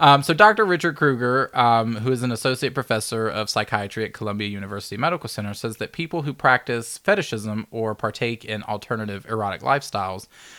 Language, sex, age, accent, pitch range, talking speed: English, male, 20-39, American, 105-130 Hz, 170 wpm